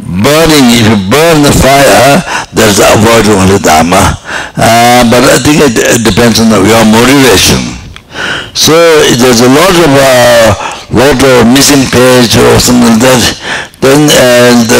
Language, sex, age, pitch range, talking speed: English, male, 60-79, 115-130 Hz, 160 wpm